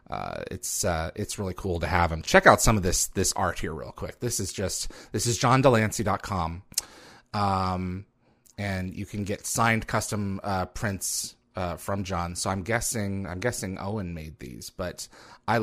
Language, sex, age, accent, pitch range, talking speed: English, male, 30-49, American, 90-110 Hz, 180 wpm